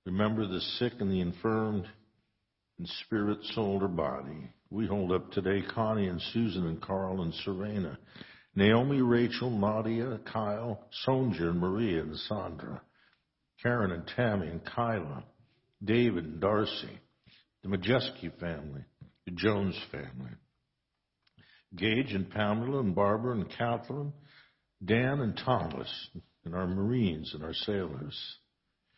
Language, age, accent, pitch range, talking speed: English, 60-79, American, 90-120 Hz, 125 wpm